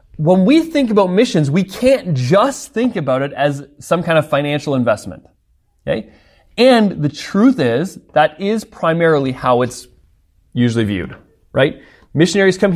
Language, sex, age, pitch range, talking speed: English, male, 30-49, 130-190 Hz, 150 wpm